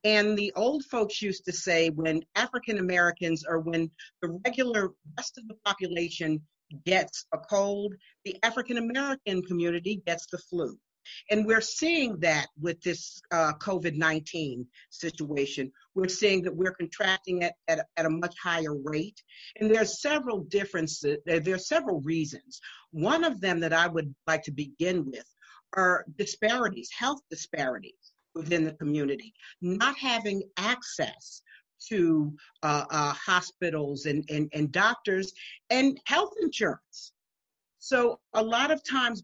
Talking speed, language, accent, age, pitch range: 145 wpm, English, American, 50-69, 165-235 Hz